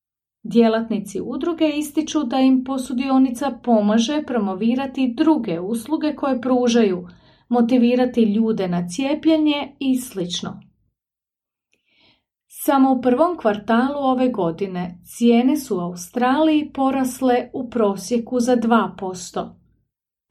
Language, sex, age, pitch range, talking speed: English, female, 40-59, 200-270 Hz, 100 wpm